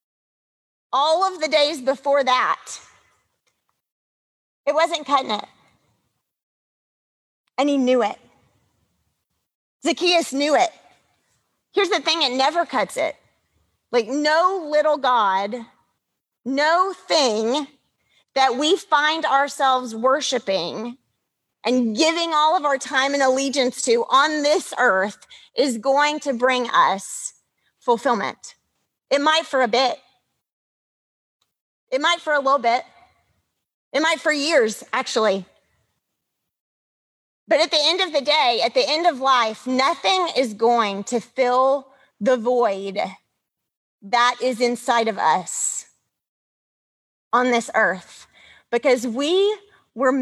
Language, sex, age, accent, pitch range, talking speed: English, female, 30-49, American, 240-305 Hz, 120 wpm